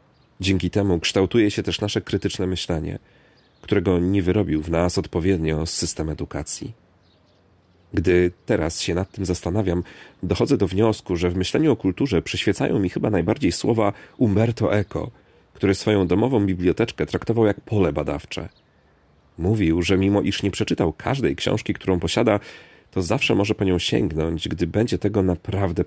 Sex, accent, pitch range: male, native, 85-100 Hz